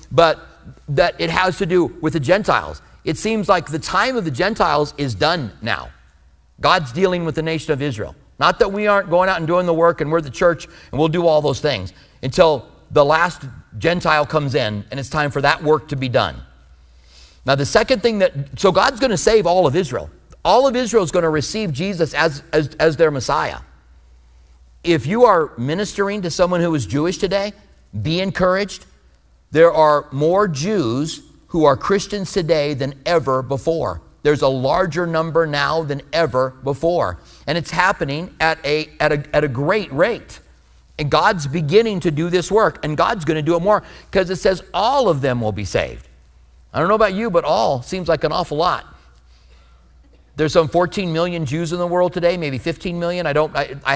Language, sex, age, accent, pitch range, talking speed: English, male, 50-69, American, 135-180 Hz, 195 wpm